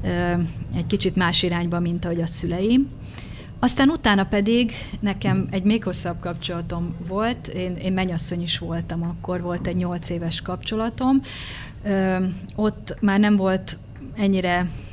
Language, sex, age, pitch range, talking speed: Hungarian, female, 30-49, 170-190 Hz, 135 wpm